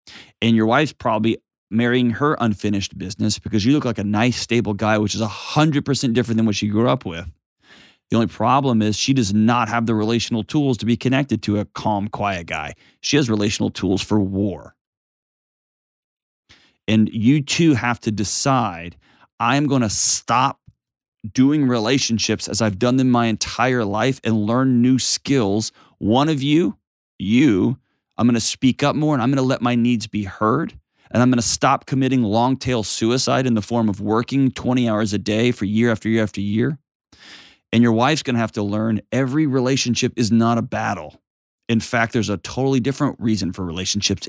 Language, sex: English, male